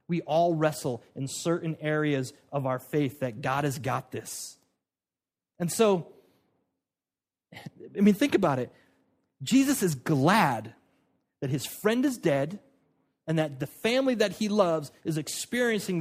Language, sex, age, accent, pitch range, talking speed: English, male, 30-49, American, 145-195 Hz, 140 wpm